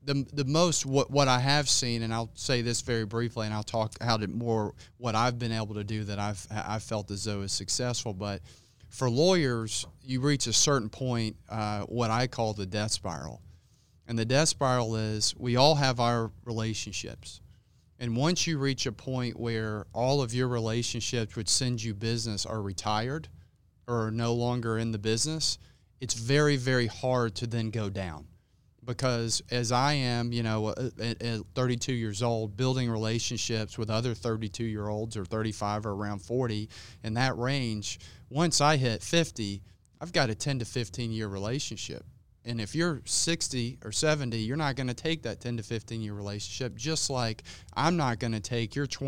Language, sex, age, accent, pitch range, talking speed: English, male, 30-49, American, 110-125 Hz, 180 wpm